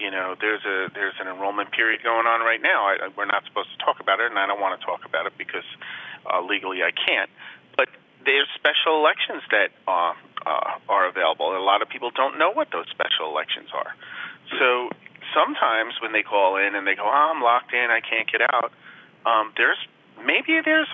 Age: 40-59